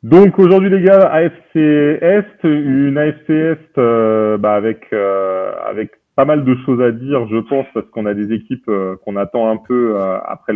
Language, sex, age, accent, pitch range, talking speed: French, male, 30-49, French, 105-135 Hz, 195 wpm